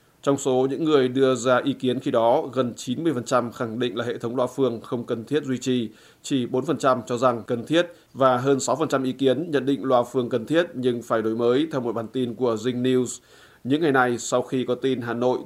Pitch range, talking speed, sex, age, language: 120-135 Hz, 235 wpm, male, 20-39, Vietnamese